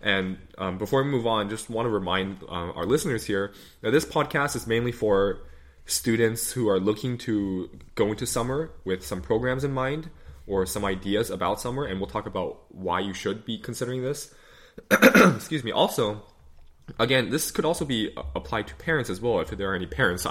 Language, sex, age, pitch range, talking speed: English, male, 20-39, 90-110 Hz, 195 wpm